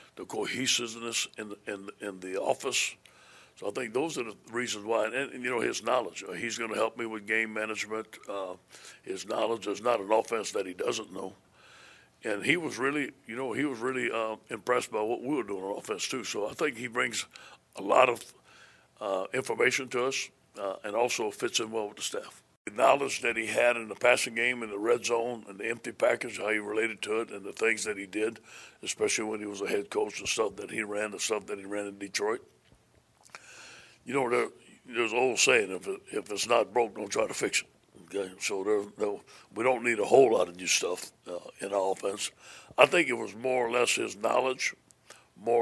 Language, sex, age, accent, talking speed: English, male, 60-79, American, 220 wpm